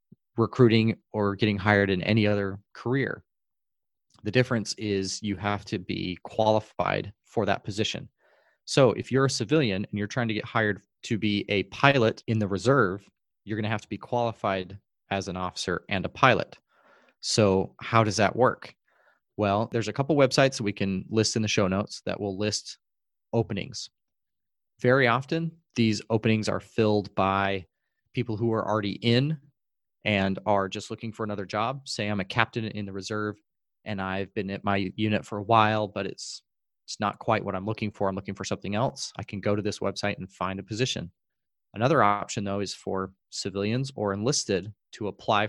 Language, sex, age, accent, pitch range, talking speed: English, male, 30-49, American, 100-115 Hz, 185 wpm